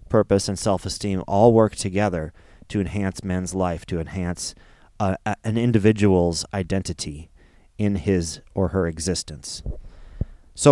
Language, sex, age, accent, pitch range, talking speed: English, male, 30-49, American, 85-105 Hz, 125 wpm